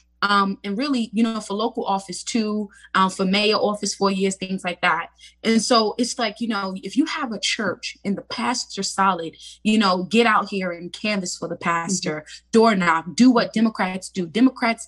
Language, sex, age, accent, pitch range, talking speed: English, female, 20-39, American, 195-250 Hz, 200 wpm